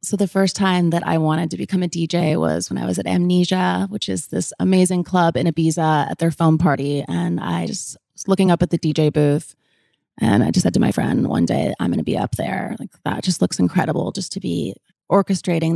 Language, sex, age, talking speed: English, female, 20-39, 230 wpm